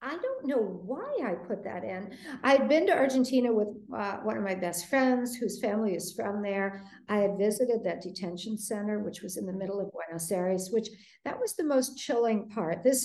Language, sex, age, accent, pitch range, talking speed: English, female, 60-79, American, 185-235 Hz, 210 wpm